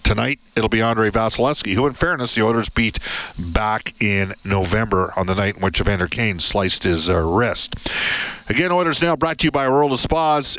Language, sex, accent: English, male, American